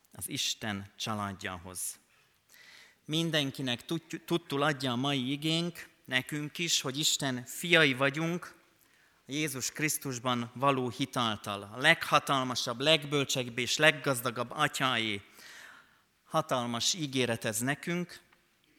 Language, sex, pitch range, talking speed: Hungarian, male, 115-155 Hz, 95 wpm